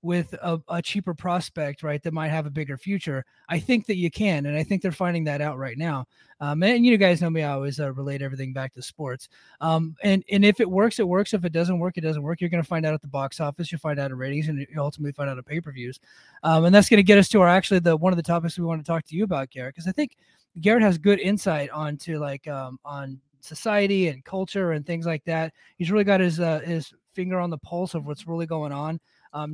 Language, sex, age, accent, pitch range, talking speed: English, male, 20-39, American, 150-185 Hz, 270 wpm